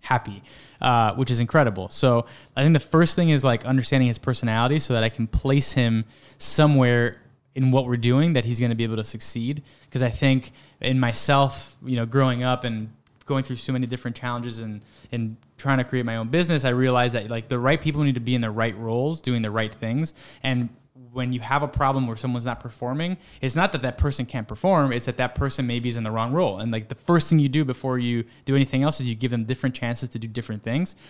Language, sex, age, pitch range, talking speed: English, male, 10-29, 120-140 Hz, 245 wpm